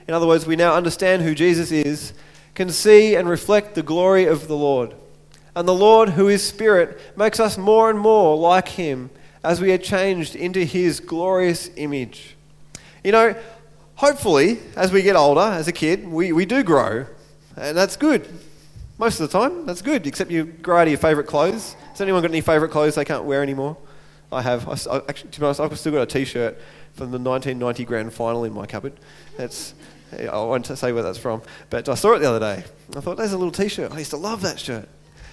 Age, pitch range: 20-39, 150-200 Hz